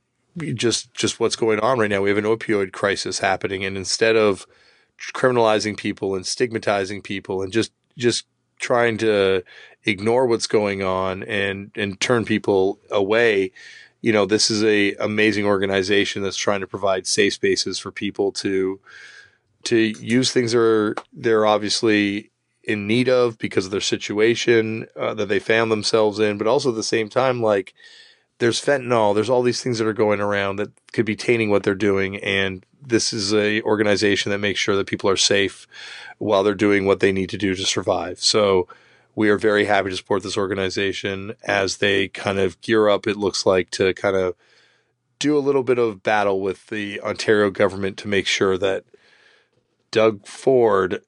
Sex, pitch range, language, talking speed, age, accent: male, 100-115 Hz, English, 180 wpm, 30-49, American